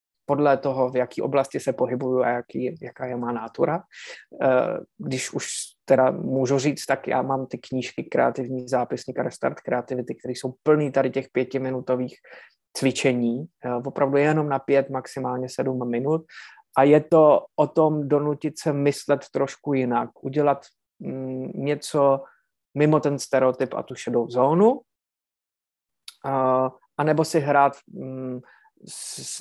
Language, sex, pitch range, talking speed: Slovak, male, 125-140 Hz, 135 wpm